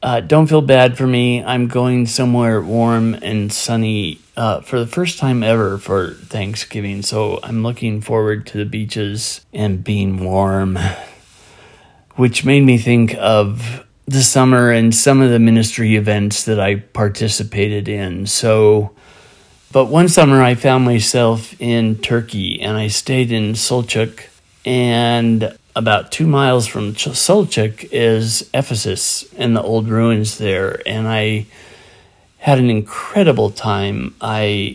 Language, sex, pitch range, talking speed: English, male, 105-125 Hz, 140 wpm